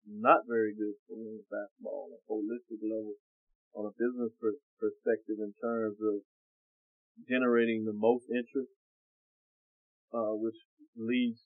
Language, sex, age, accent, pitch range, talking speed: English, male, 30-49, American, 110-130 Hz, 130 wpm